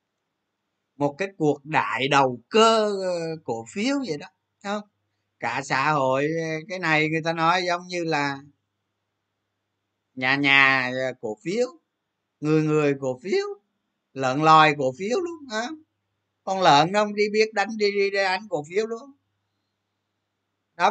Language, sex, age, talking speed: Vietnamese, male, 20-39, 145 wpm